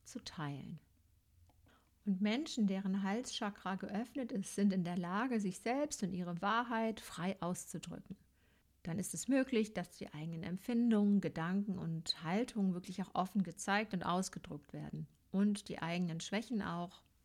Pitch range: 165-205 Hz